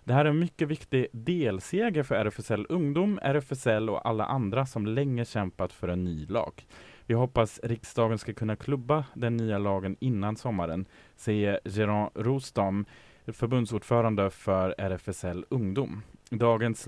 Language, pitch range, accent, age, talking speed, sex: Swedish, 100-130 Hz, Norwegian, 20-39, 140 wpm, male